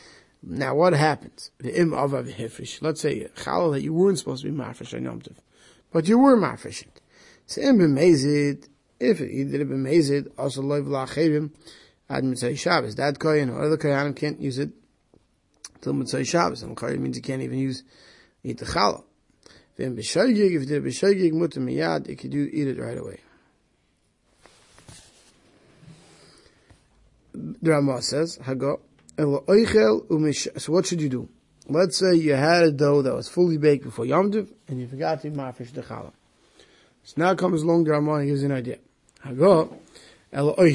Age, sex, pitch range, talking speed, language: 30-49, male, 140-185 Hz, 95 wpm, English